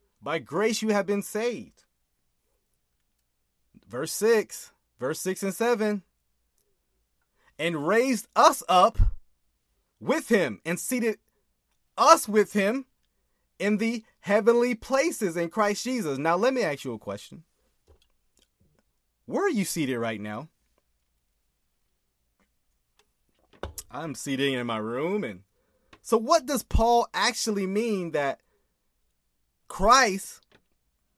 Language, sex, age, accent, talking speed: English, male, 30-49, American, 110 wpm